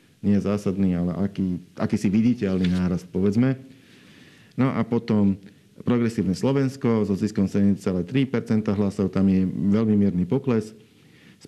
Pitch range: 95-110 Hz